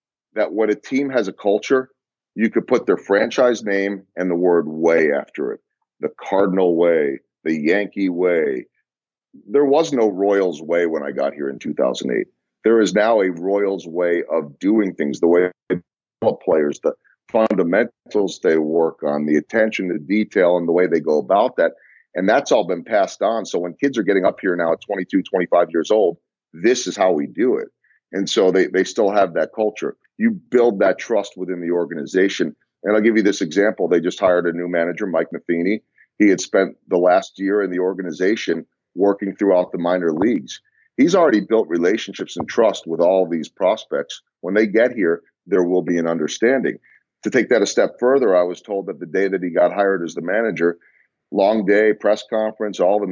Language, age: English, 40-59